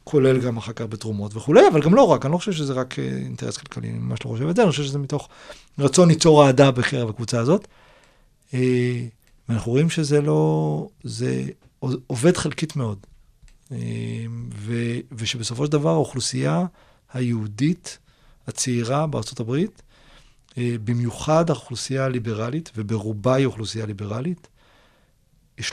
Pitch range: 115-150 Hz